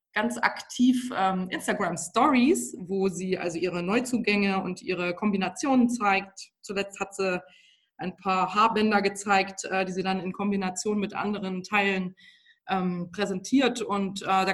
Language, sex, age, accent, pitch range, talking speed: German, female, 20-39, German, 195-245 Hz, 140 wpm